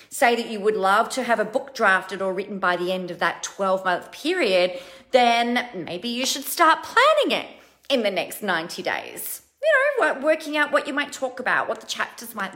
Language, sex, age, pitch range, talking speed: English, female, 30-49, 190-260 Hz, 215 wpm